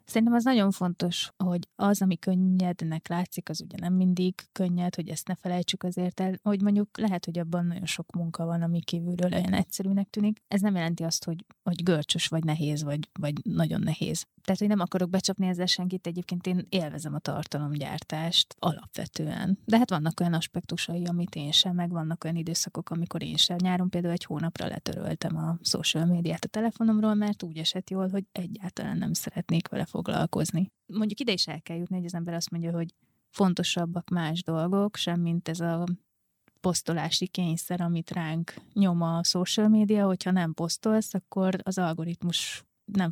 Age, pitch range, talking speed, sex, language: 20-39, 165-190 Hz, 180 wpm, female, Hungarian